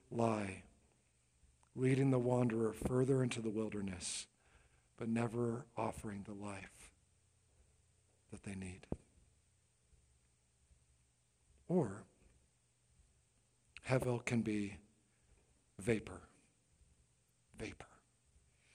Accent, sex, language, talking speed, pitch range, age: American, male, English, 70 wpm, 100-160 Hz, 50-69